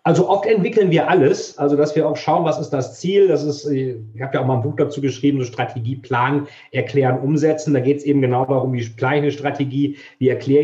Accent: German